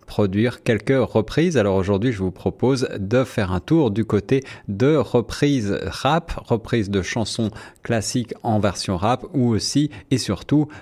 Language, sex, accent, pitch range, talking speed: French, male, French, 105-135 Hz, 155 wpm